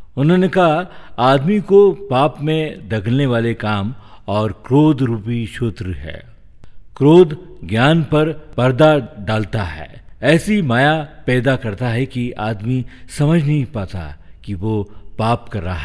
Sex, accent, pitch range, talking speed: male, native, 100-140 Hz, 135 wpm